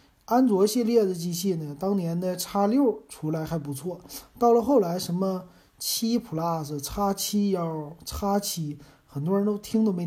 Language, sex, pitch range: Chinese, male, 150-205 Hz